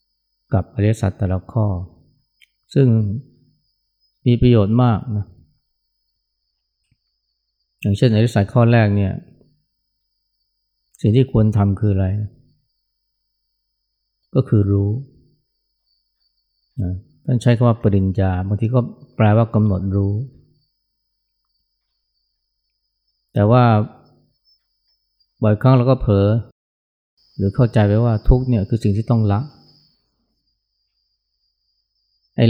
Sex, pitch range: male, 100-120 Hz